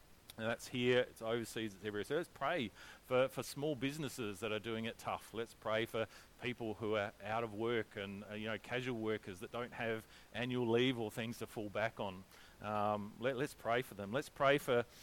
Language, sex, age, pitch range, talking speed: English, male, 40-59, 105-125 Hz, 210 wpm